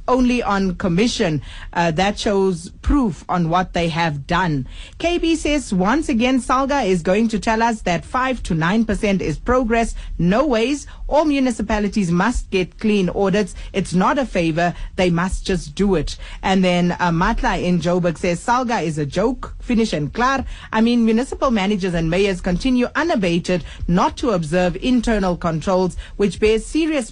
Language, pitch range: English, 180-240 Hz